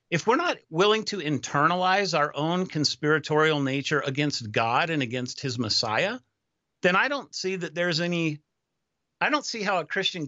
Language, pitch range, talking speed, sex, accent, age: English, 130-185 Hz, 170 wpm, male, American, 50-69